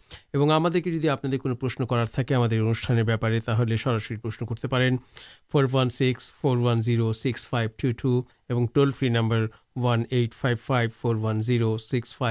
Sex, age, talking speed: male, 50-69, 115 wpm